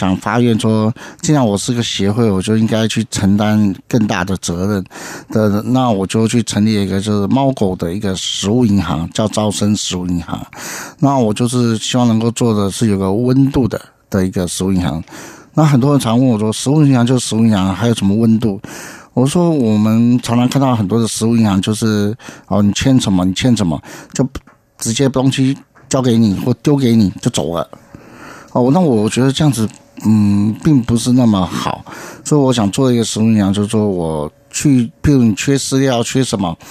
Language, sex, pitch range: Chinese, male, 100-130 Hz